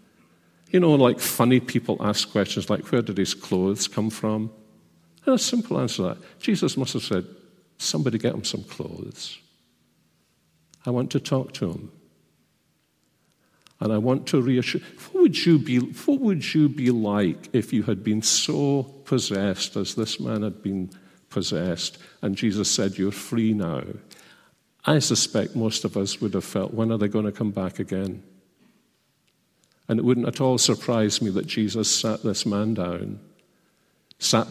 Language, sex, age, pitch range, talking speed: English, male, 50-69, 95-120 Hz, 170 wpm